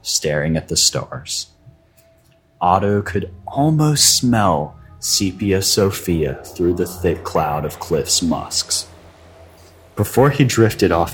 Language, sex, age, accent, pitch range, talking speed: English, male, 30-49, American, 80-110 Hz, 115 wpm